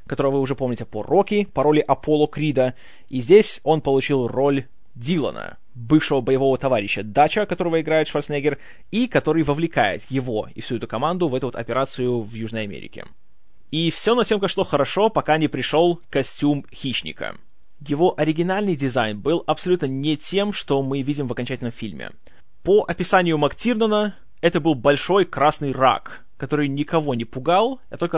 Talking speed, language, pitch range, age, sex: 160 wpm, Russian, 130-170 Hz, 20-39, male